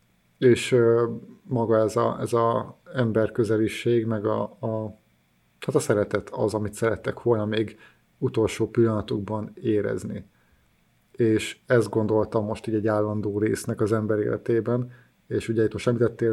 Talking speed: 135 wpm